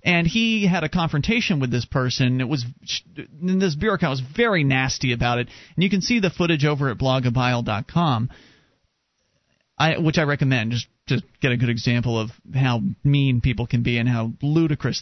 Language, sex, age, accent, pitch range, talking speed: English, male, 30-49, American, 125-155 Hz, 185 wpm